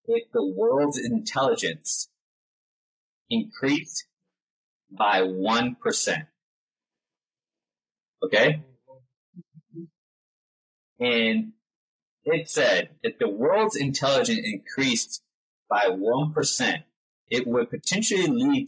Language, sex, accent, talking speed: English, male, American, 70 wpm